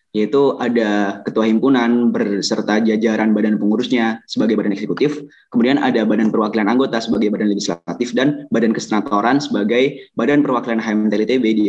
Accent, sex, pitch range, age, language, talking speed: native, male, 110-135 Hz, 20-39, Indonesian, 140 wpm